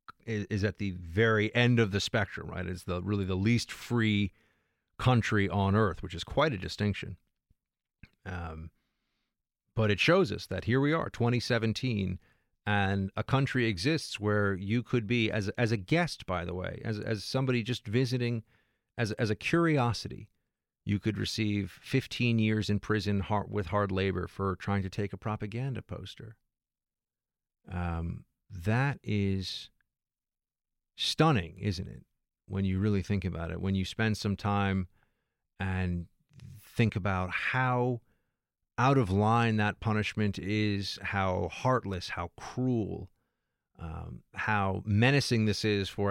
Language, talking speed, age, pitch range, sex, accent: English, 145 wpm, 40-59, 95-115 Hz, male, American